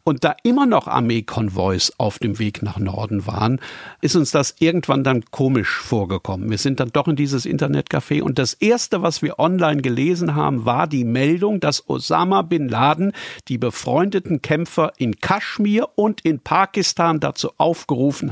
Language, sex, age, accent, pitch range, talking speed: German, male, 50-69, German, 115-170 Hz, 165 wpm